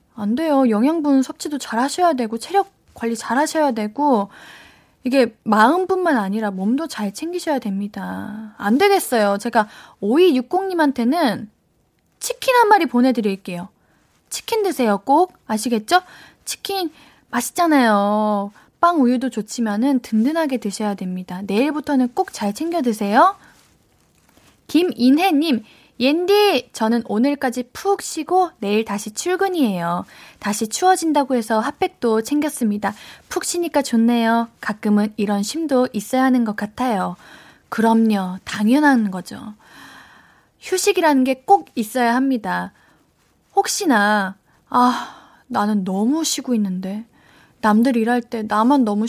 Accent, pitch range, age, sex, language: native, 215-310 Hz, 10-29, female, Korean